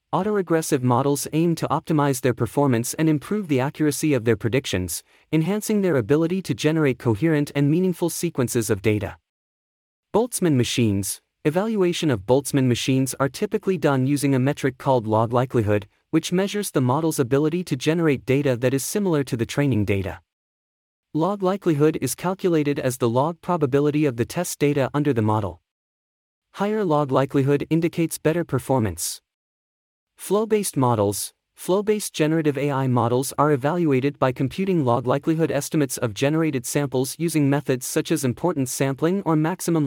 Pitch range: 125-160 Hz